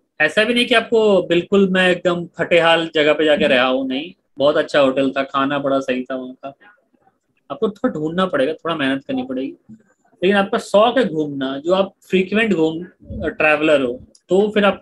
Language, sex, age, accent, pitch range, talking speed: Hindi, male, 30-49, native, 155-195 Hz, 155 wpm